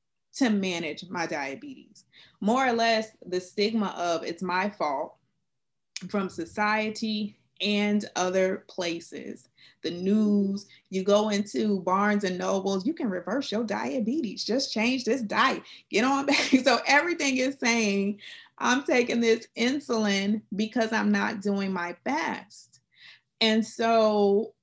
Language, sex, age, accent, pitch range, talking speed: English, female, 20-39, American, 185-225 Hz, 130 wpm